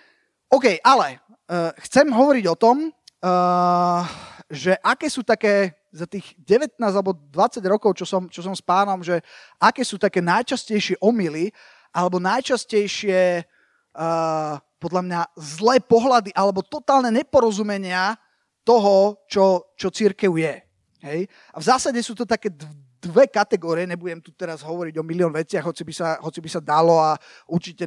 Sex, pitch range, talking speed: male, 165-215 Hz, 140 wpm